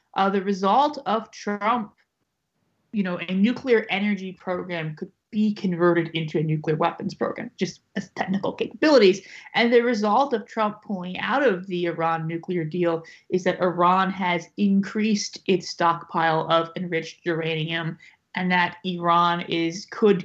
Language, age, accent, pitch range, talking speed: English, 30-49, American, 165-195 Hz, 150 wpm